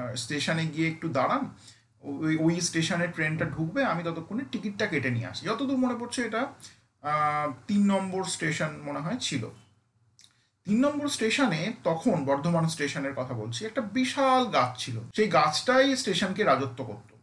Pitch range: 145-215 Hz